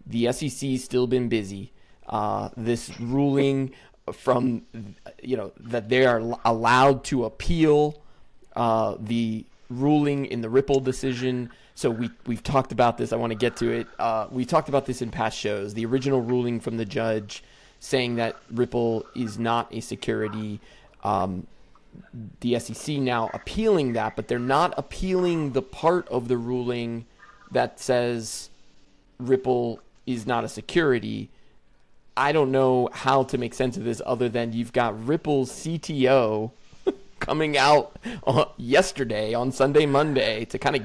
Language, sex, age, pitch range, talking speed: English, male, 20-39, 115-130 Hz, 150 wpm